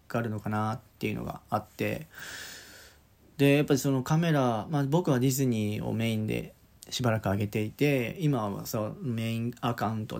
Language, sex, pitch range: Japanese, male, 110-135 Hz